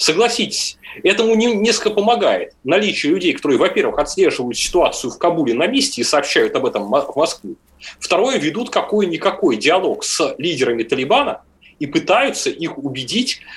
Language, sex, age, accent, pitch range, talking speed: Russian, male, 30-49, native, 185-250 Hz, 135 wpm